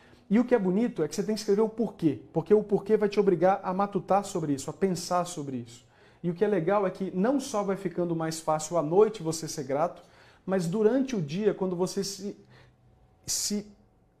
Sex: male